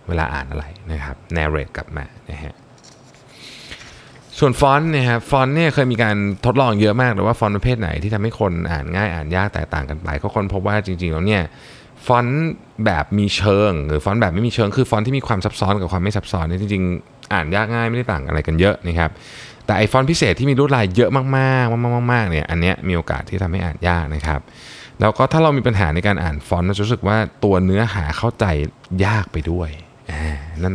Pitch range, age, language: 85-120 Hz, 20-39, Thai